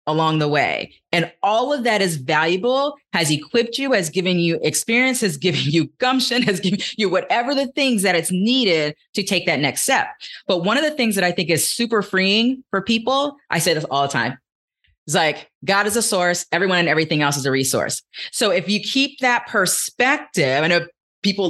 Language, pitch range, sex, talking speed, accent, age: English, 175-245 Hz, female, 210 wpm, American, 30-49